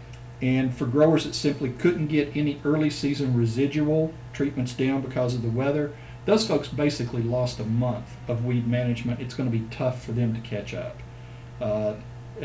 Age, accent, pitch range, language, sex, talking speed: 50-69, American, 120-140 Hz, English, male, 180 wpm